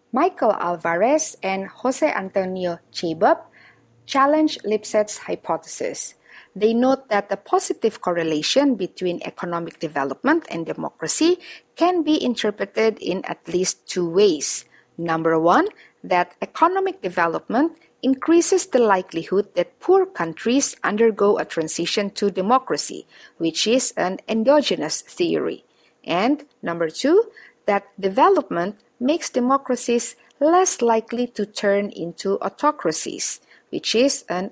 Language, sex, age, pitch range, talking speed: English, female, 50-69, 180-300 Hz, 115 wpm